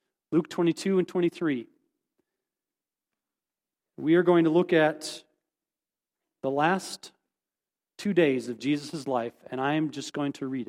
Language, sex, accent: English, male, American